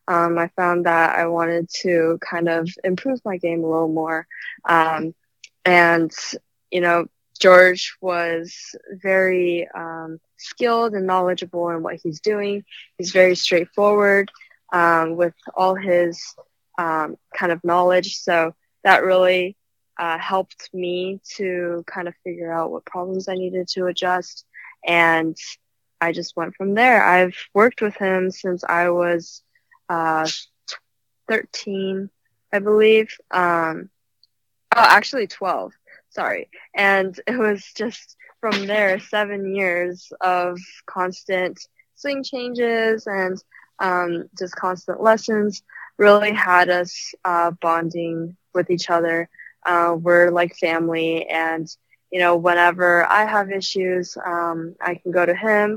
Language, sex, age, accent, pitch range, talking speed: English, female, 20-39, American, 170-190 Hz, 130 wpm